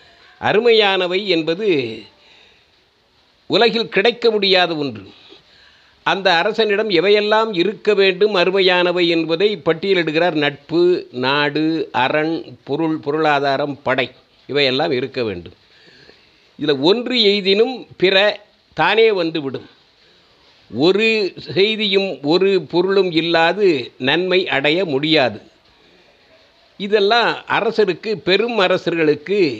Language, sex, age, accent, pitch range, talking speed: Tamil, male, 50-69, native, 150-205 Hz, 85 wpm